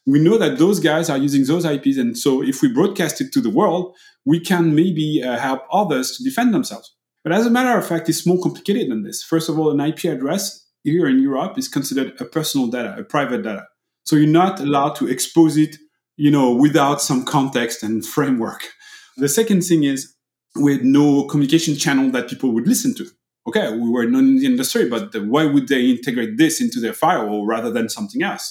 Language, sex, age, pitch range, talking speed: English, male, 30-49, 140-225 Hz, 215 wpm